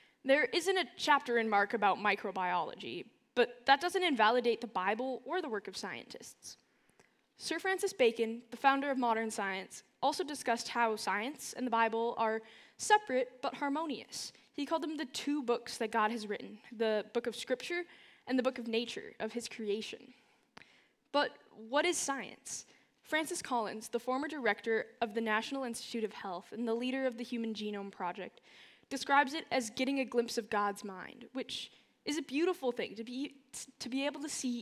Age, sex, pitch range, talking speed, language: 10-29, female, 220-270 Hz, 180 wpm, English